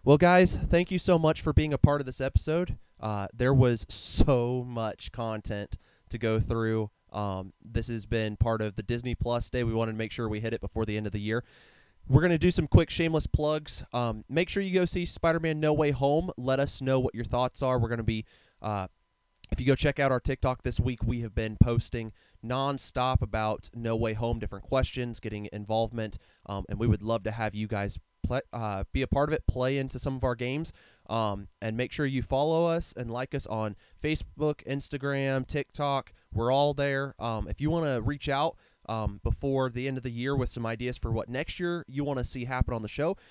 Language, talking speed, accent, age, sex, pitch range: English, 225 wpm, American, 20-39, male, 110-140 Hz